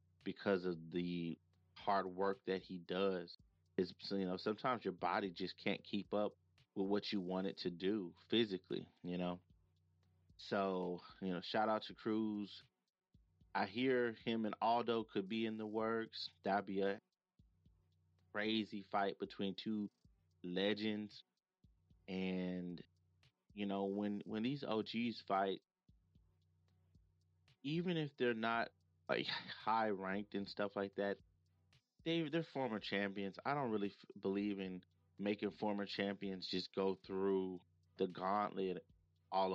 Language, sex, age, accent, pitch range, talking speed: English, male, 30-49, American, 90-105 Hz, 140 wpm